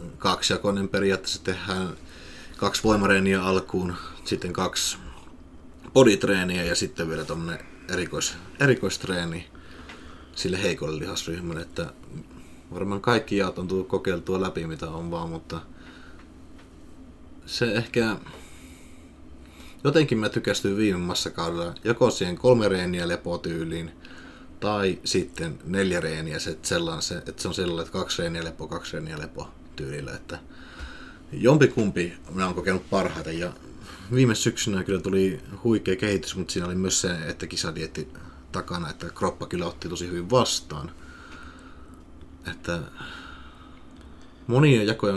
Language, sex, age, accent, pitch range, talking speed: Finnish, male, 30-49, native, 85-100 Hz, 125 wpm